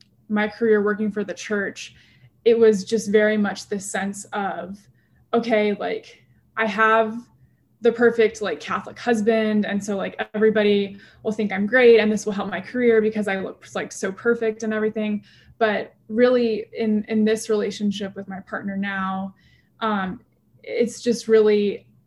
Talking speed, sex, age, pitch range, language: 160 wpm, female, 20-39, 200-225 Hz, English